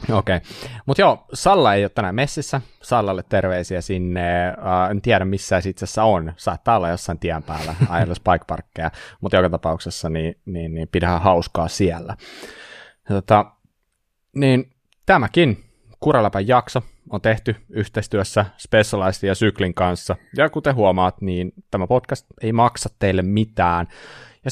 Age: 30-49